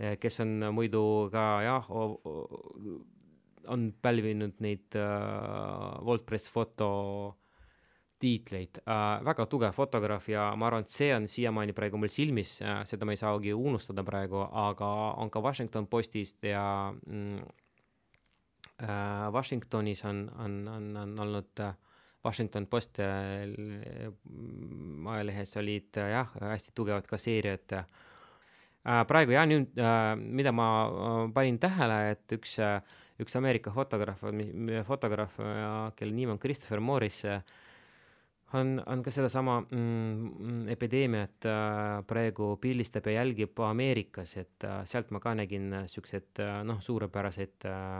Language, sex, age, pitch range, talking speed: English, male, 20-39, 100-115 Hz, 120 wpm